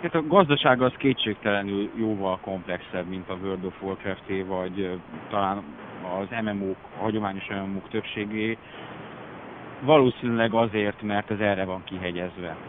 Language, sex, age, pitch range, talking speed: Hungarian, male, 30-49, 95-110 Hz, 125 wpm